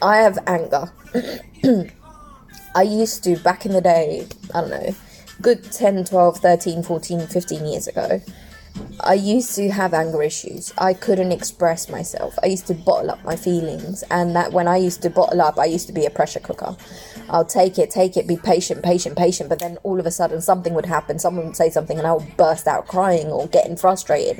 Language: English